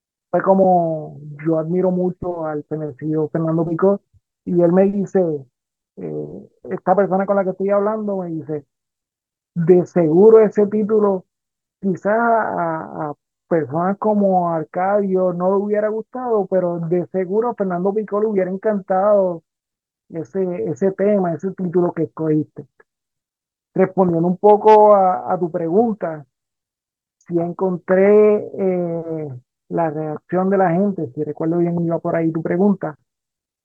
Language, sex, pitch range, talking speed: Spanish, male, 160-195 Hz, 135 wpm